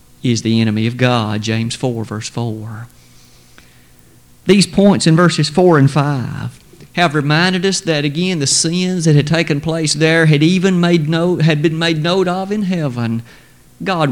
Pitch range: 130-175 Hz